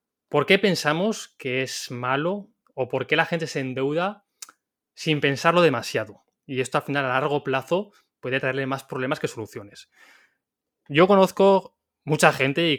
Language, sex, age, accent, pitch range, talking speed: Spanish, male, 20-39, Spanish, 120-150 Hz, 155 wpm